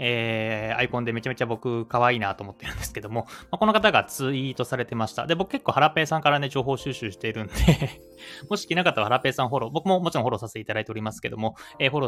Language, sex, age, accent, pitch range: Japanese, male, 20-39, native, 115-165 Hz